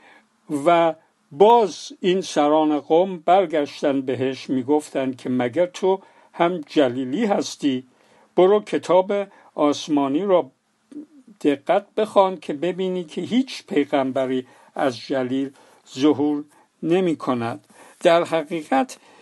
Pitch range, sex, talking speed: 135-185 Hz, male, 95 wpm